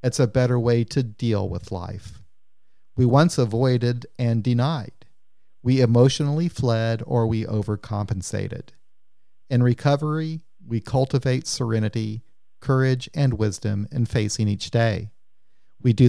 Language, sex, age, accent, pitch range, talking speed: English, male, 40-59, American, 110-130 Hz, 125 wpm